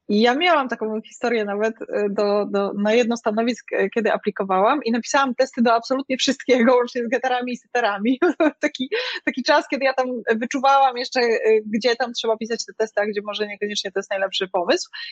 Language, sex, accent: Polish, female, native